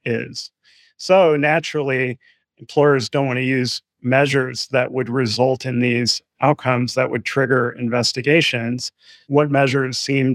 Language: English